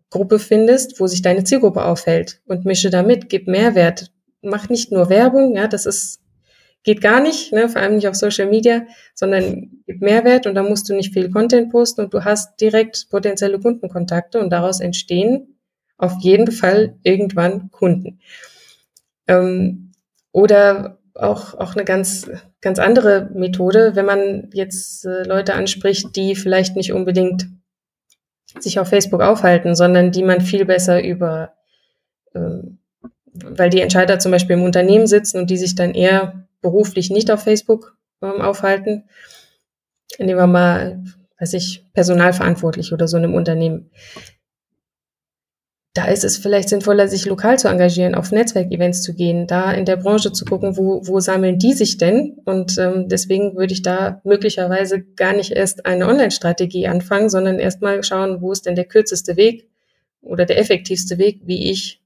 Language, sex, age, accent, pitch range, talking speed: German, female, 20-39, German, 185-210 Hz, 160 wpm